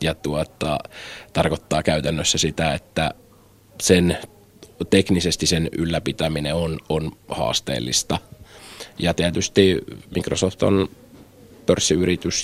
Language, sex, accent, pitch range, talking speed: Finnish, male, native, 75-90 Hz, 85 wpm